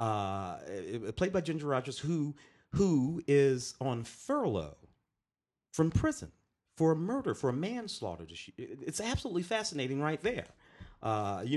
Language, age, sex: English, 40-59, male